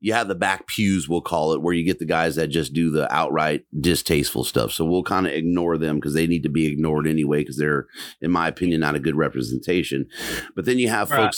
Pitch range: 75-100 Hz